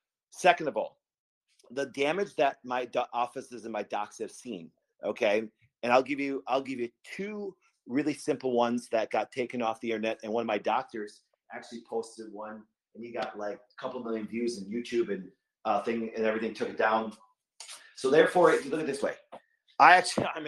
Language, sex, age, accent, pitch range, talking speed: English, male, 30-49, American, 115-150 Hz, 200 wpm